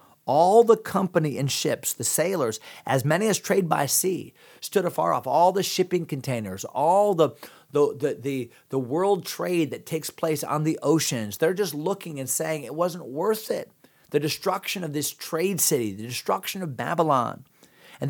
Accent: American